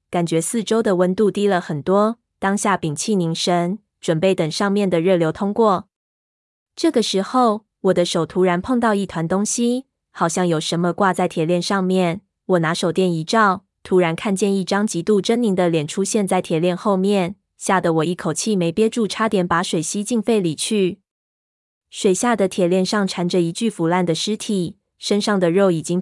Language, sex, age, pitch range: Chinese, female, 20-39, 175-205 Hz